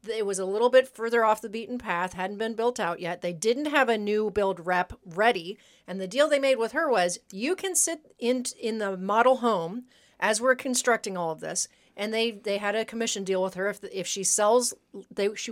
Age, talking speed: 40-59, 235 wpm